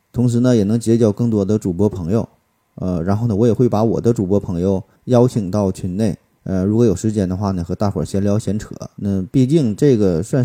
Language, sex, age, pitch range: Chinese, male, 20-39, 100-125 Hz